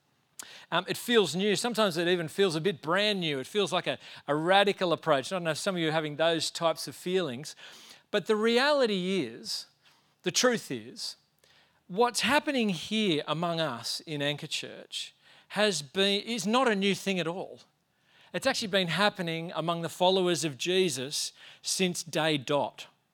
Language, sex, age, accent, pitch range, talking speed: English, male, 40-59, Australian, 150-190 Hz, 175 wpm